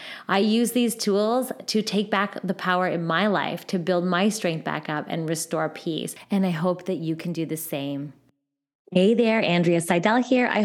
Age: 20-39